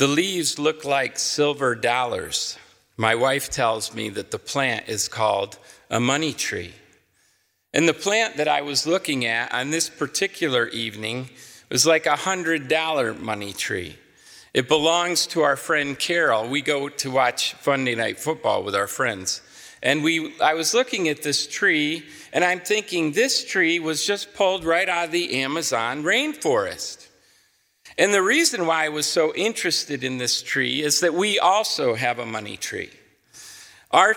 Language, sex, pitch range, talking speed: English, male, 140-180 Hz, 165 wpm